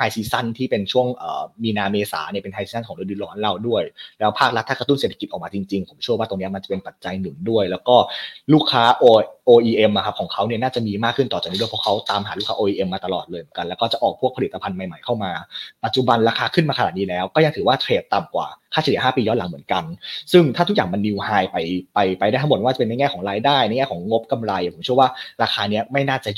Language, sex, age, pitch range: Thai, male, 20-39, 100-130 Hz